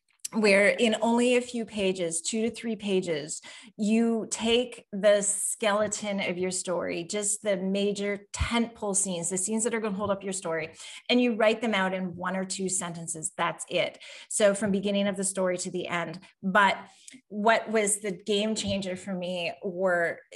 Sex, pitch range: female, 190-250 Hz